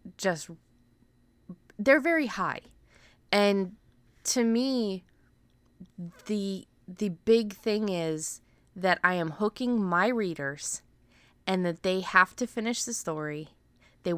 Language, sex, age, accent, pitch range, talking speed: English, female, 20-39, American, 145-195 Hz, 115 wpm